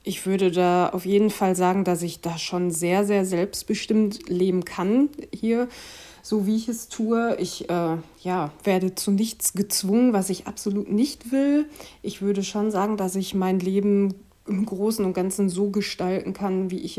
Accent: German